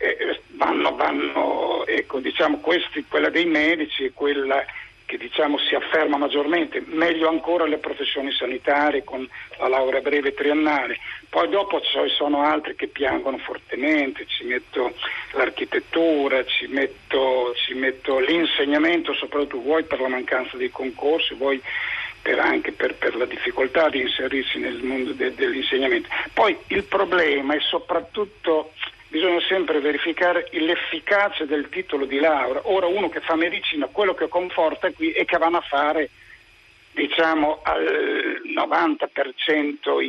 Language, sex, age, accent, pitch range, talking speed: Italian, male, 50-69, native, 145-200 Hz, 140 wpm